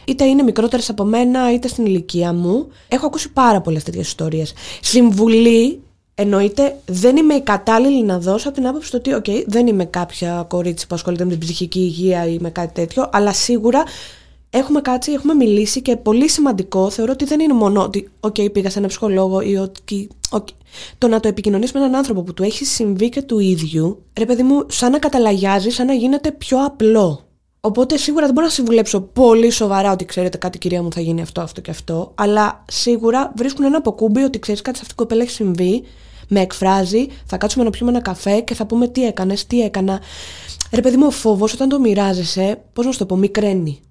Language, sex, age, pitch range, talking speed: Greek, female, 20-39, 190-245 Hz, 210 wpm